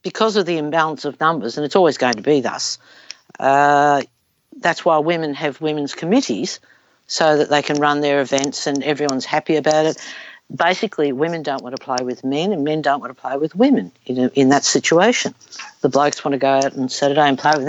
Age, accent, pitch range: 60-79, Australian, 135-155 Hz